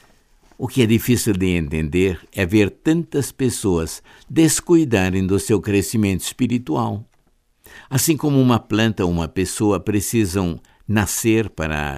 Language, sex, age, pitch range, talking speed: Portuguese, male, 60-79, 90-125 Hz, 125 wpm